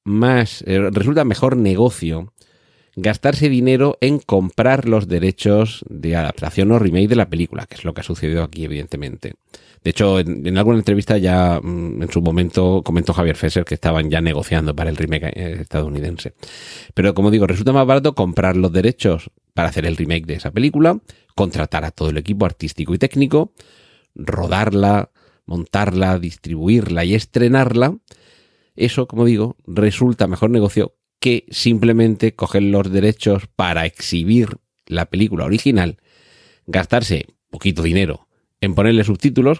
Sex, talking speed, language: male, 150 wpm, Spanish